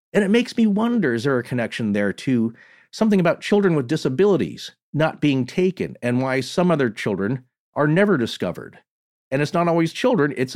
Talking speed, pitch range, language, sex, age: 190 wpm, 125-190 Hz, English, male, 40-59